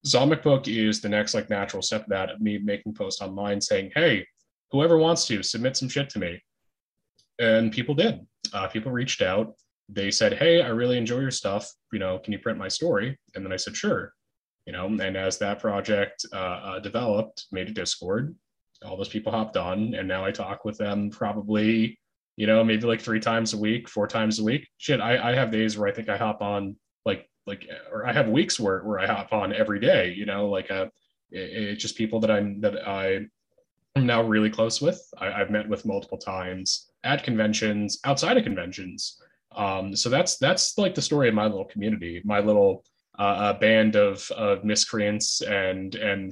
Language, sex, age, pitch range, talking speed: English, male, 20-39, 100-115 Hz, 205 wpm